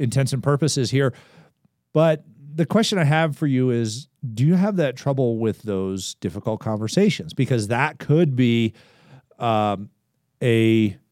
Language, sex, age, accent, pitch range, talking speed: English, male, 40-59, American, 115-155 Hz, 145 wpm